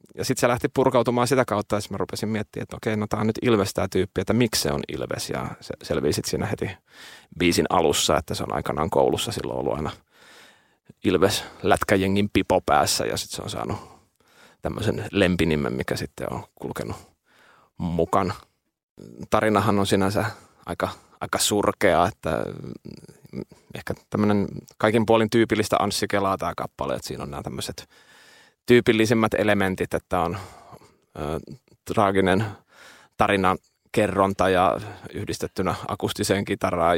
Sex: male